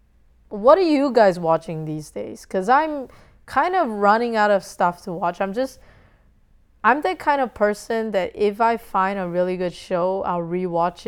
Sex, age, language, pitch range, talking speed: female, 20-39, English, 175-215 Hz, 185 wpm